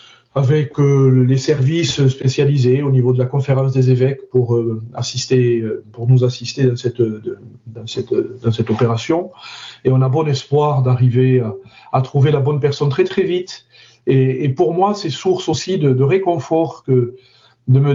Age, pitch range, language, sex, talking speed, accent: 40-59, 125-150 Hz, French, male, 180 wpm, French